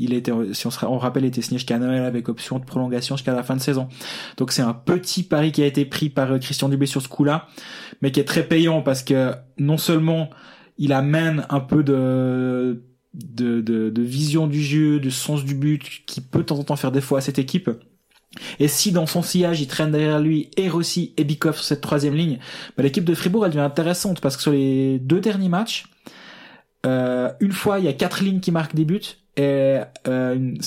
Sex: male